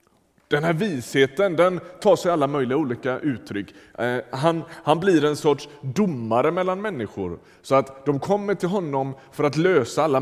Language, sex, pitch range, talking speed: Swedish, male, 115-165 Hz, 165 wpm